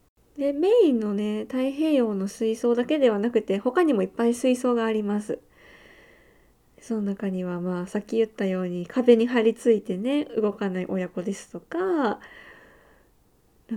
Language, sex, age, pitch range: Japanese, female, 20-39, 205-260 Hz